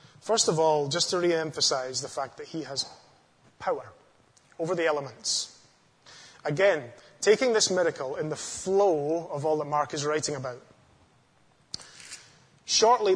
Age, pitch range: 20-39, 140-180 Hz